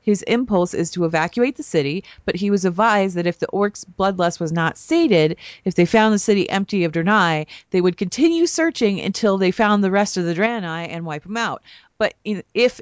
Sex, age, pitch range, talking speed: female, 30-49, 175-235 Hz, 210 wpm